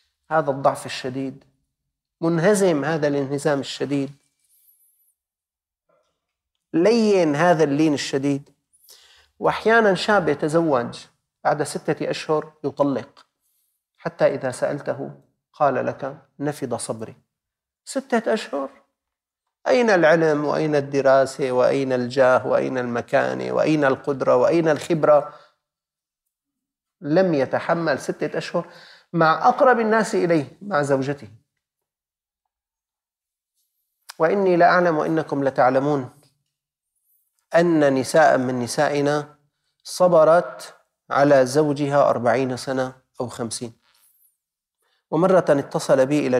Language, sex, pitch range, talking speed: Arabic, male, 135-165 Hz, 90 wpm